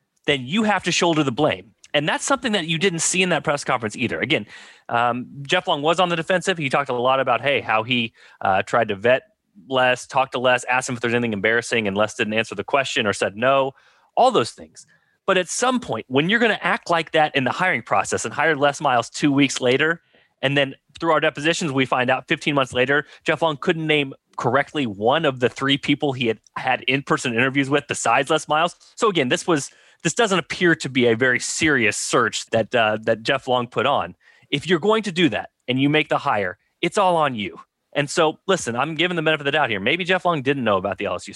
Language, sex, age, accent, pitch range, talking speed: English, male, 30-49, American, 125-170 Hz, 240 wpm